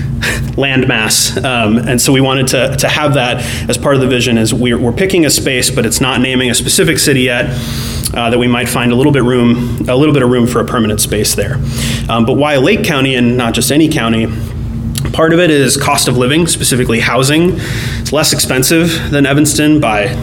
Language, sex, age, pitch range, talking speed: English, male, 30-49, 120-145 Hz, 210 wpm